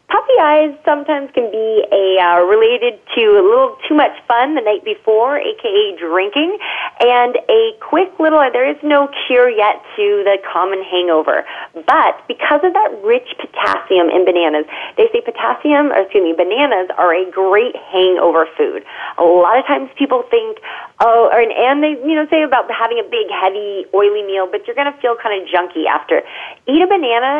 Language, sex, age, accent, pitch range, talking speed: English, female, 30-49, American, 190-310 Hz, 185 wpm